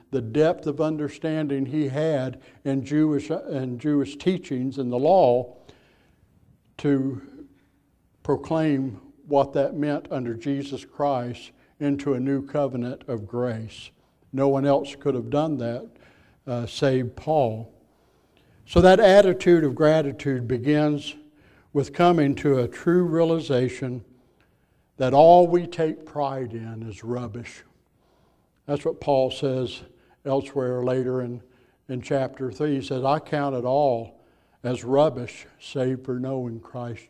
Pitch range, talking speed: 125-150 Hz, 130 wpm